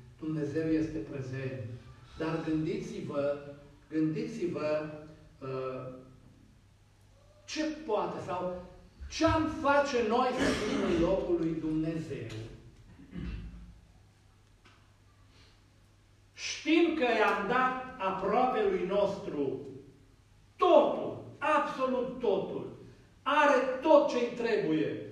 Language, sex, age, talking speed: Romanian, male, 50-69, 80 wpm